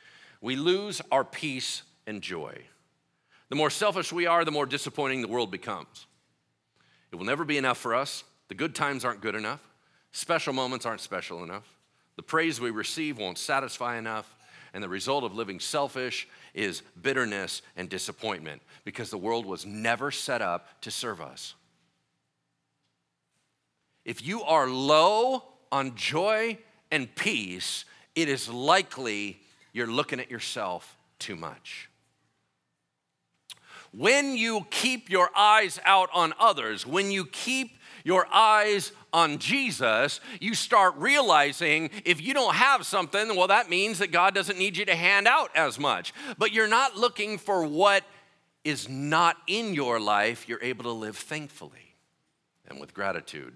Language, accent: English, American